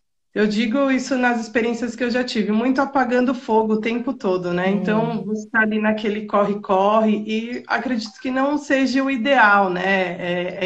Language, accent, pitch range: Portuguese, Brazilian, 185-230 Hz